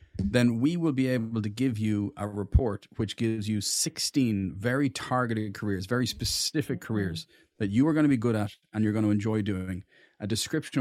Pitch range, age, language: 100-120 Hz, 30-49, English